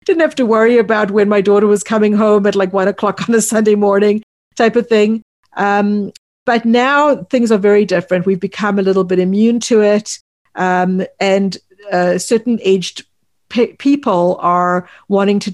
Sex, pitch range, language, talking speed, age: female, 180-210 Hz, English, 180 wpm, 50-69